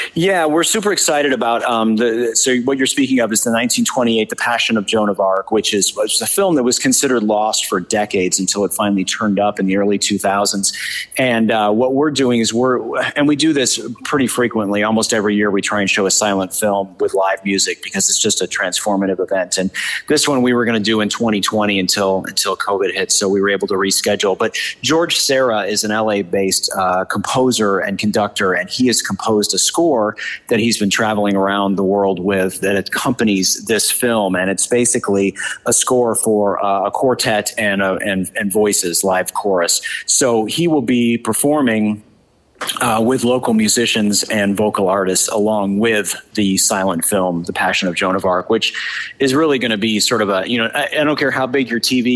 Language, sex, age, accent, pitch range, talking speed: English, male, 30-49, American, 100-125 Hz, 205 wpm